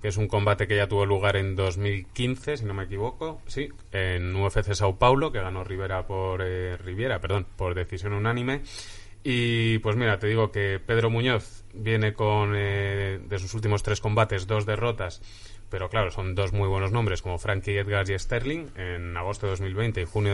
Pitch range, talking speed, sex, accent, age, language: 95-110 Hz, 190 wpm, male, Spanish, 20-39, Spanish